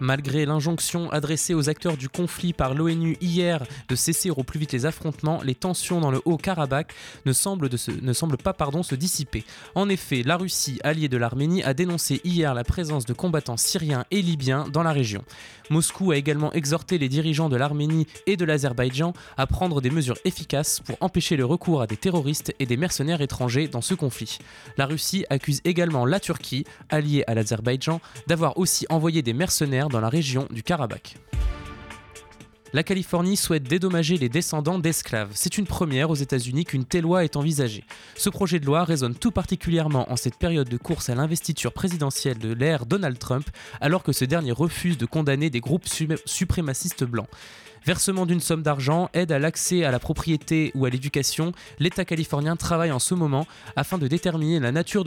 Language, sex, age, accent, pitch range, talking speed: French, male, 20-39, French, 130-170 Hz, 190 wpm